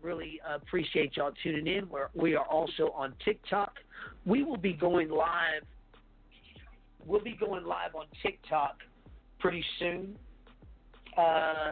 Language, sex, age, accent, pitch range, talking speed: English, male, 40-59, American, 150-185 Hz, 130 wpm